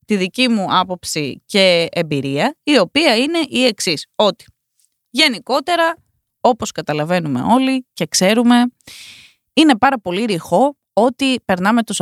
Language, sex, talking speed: Greek, female, 125 wpm